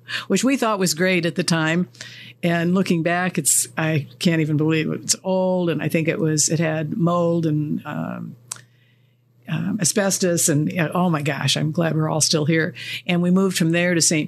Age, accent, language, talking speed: 50-69, American, English, 200 wpm